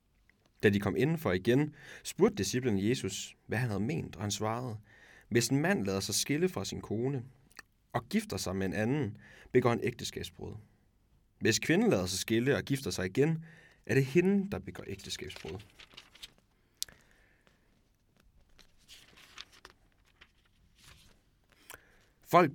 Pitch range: 95-135 Hz